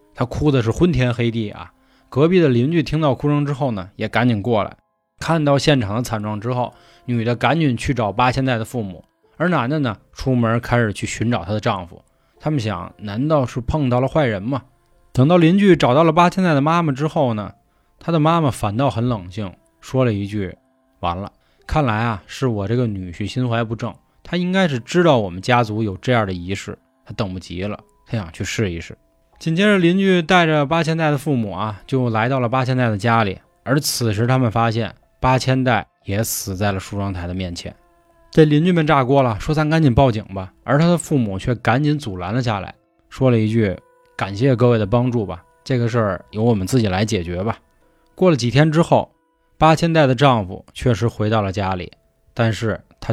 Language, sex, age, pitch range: Chinese, male, 20-39, 105-140 Hz